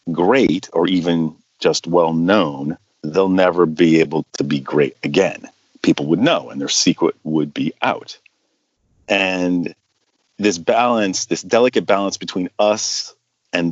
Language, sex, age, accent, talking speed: English, male, 40-59, American, 140 wpm